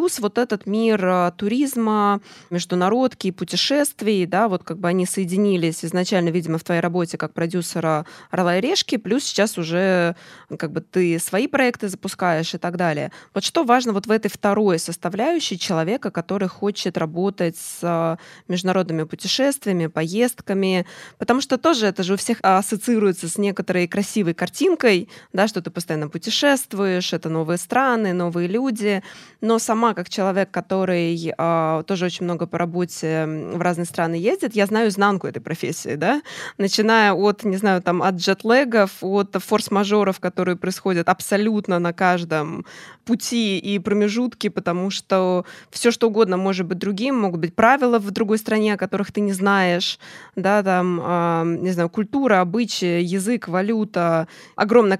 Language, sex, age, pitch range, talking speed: Russian, female, 20-39, 175-215 Hz, 155 wpm